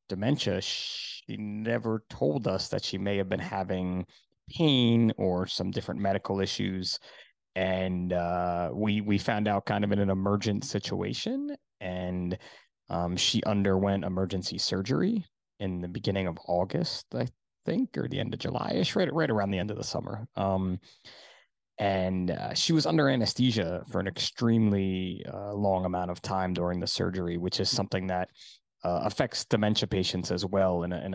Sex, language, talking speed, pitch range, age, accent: male, English, 170 wpm, 95-110 Hz, 20-39, American